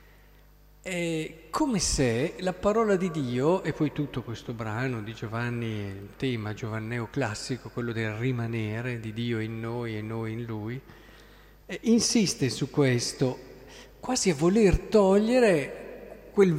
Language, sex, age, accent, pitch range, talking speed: Italian, male, 50-69, native, 125-180 Hz, 140 wpm